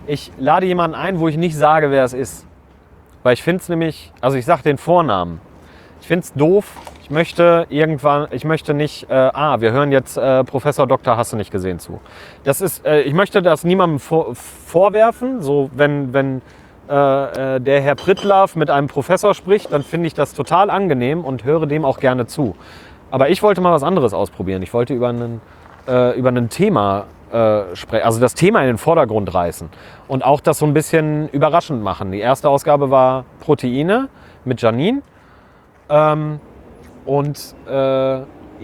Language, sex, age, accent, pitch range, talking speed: English, male, 30-49, German, 110-160 Hz, 180 wpm